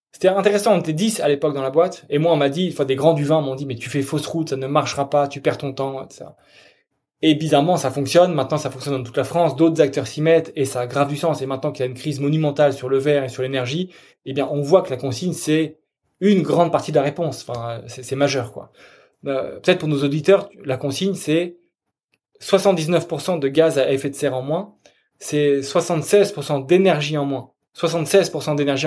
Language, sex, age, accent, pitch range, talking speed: French, male, 20-39, French, 135-170 Hz, 235 wpm